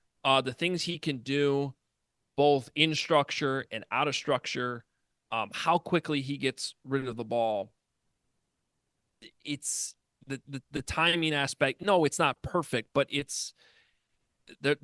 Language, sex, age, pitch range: English, male, 30-49, 115-140 Hz